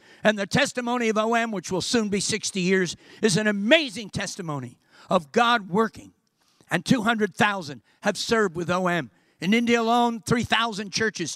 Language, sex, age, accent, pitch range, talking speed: English, male, 60-79, American, 155-205 Hz, 155 wpm